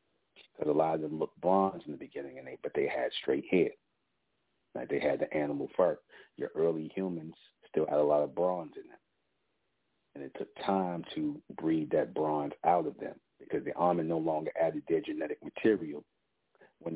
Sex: male